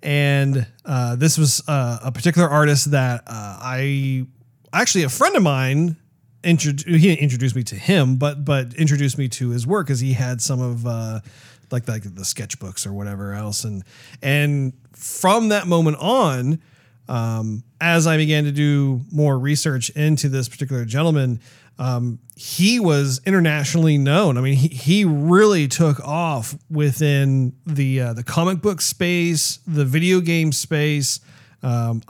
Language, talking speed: English, 155 wpm